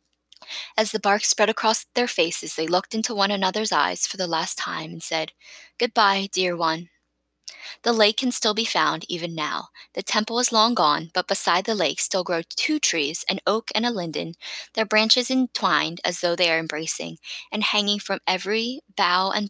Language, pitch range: English, 175-225 Hz